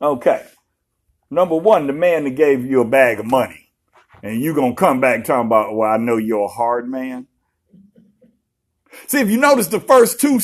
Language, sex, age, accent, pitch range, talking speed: English, male, 60-79, American, 165-235 Hz, 195 wpm